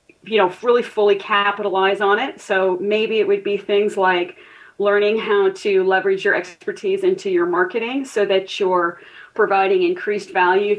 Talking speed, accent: 160 wpm, American